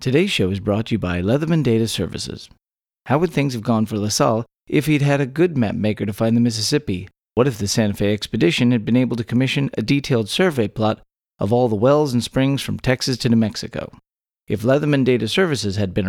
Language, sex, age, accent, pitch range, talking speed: English, male, 40-59, American, 105-140 Hz, 225 wpm